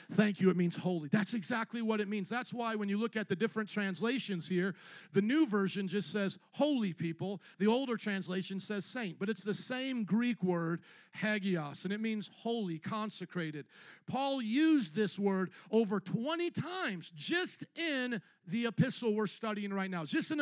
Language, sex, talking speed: English, male, 180 wpm